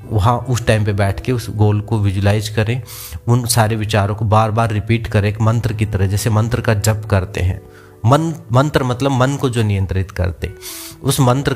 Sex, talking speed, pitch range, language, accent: male, 210 wpm, 105-130 Hz, Hindi, native